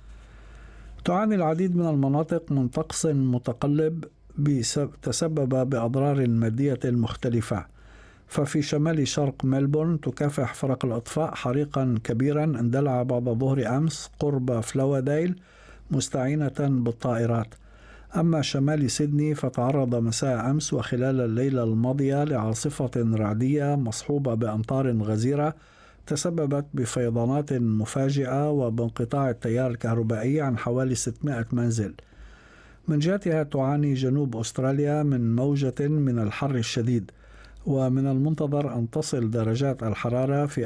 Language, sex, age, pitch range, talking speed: Arabic, male, 60-79, 120-145 Hz, 100 wpm